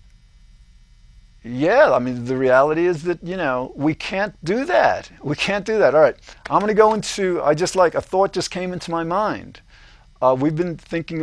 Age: 50-69